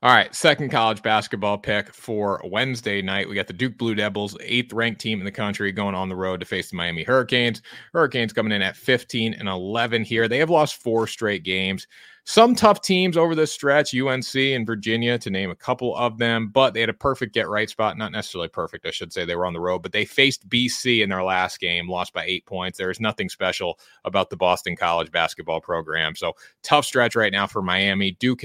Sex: male